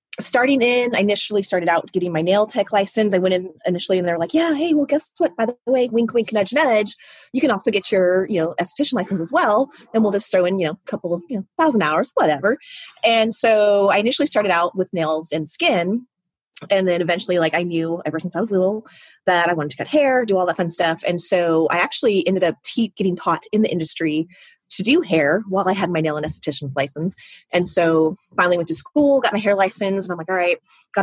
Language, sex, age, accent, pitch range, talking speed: English, female, 30-49, American, 165-220 Hz, 245 wpm